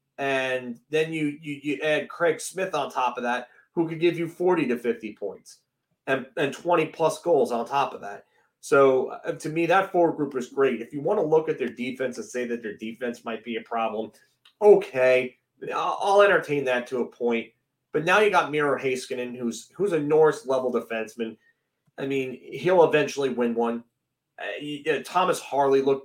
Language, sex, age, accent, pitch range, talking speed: English, male, 30-49, American, 120-155 Hz, 205 wpm